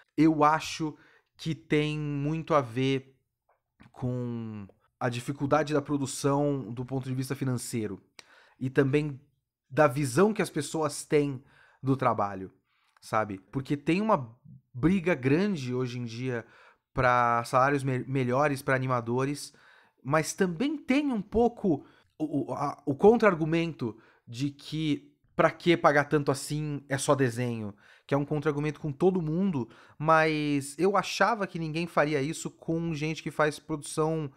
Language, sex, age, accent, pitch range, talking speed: Portuguese, male, 30-49, Brazilian, 130-155 Hz, 135 wpm